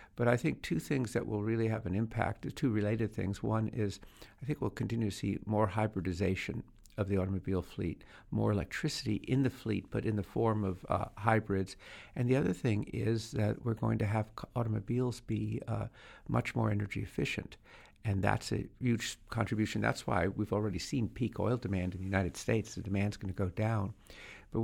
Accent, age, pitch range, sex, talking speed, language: American, 60-79, 100-115 Hz, male, 195 wpm, English